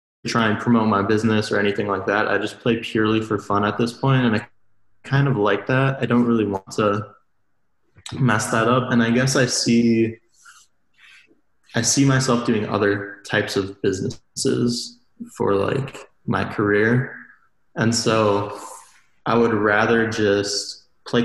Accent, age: American, 20-39